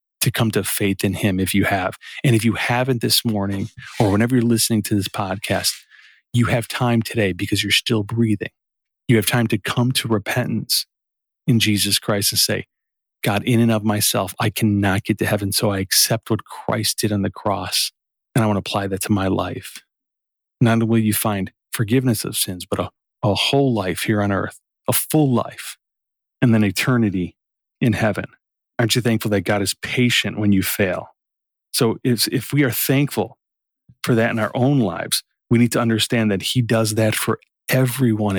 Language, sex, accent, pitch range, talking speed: English, male, American, 105-125 Hz, 195 wpm